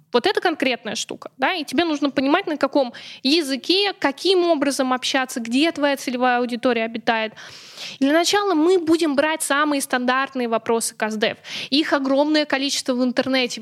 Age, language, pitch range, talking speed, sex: 20-39, Russian, 240-290 Hz, 150 wpm, female